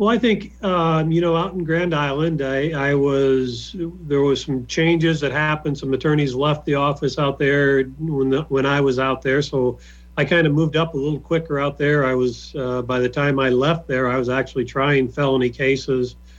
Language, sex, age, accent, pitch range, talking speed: English, male, 40-59, American, 125-145 Hz, 215 wpm